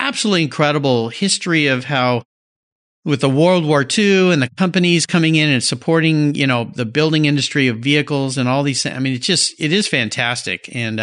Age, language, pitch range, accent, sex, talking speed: 50-69, English, 110-160 Hz, American, male, 195 wpm